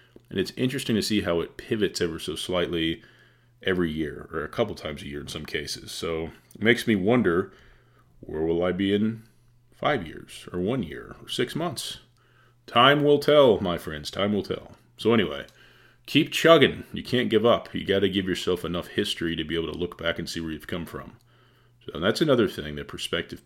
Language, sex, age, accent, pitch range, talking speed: English, male, 30-49, American, 85-120 Hz, 205 wpm